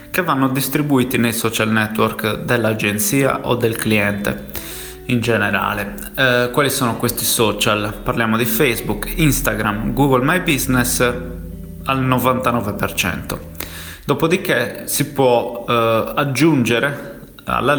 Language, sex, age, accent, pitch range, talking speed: Italian, male, 20-39, native, 110-125 Hz, 110 wpm